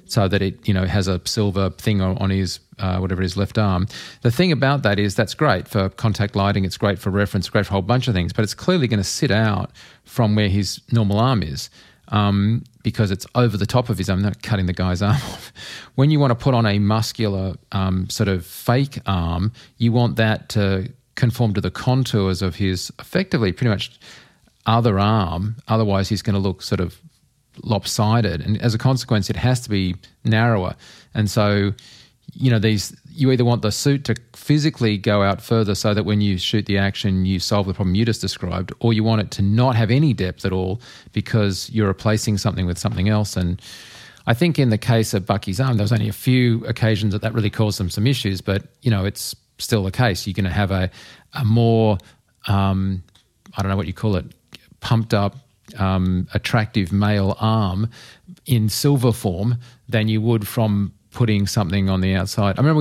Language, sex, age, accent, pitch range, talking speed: English, male, 40-59, Australian, 95-115 Hz, 210 wpm